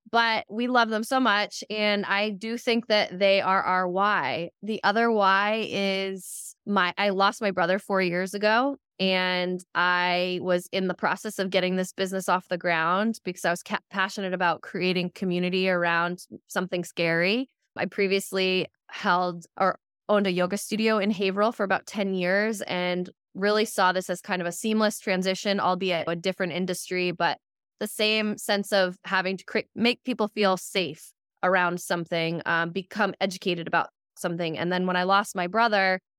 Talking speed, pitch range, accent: 175 wpm, 180-205 Hz, American